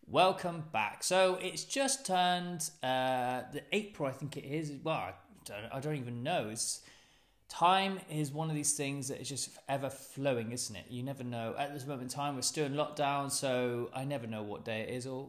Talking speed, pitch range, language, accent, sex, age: 210 wpm, 135-190 Hz, English, British, male, 30-49